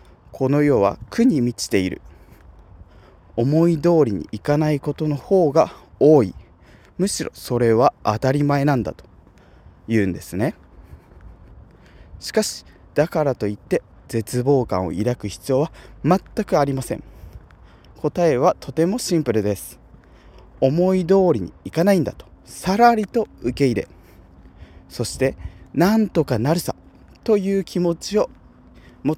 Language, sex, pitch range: Japanese, male, 105-160 Hz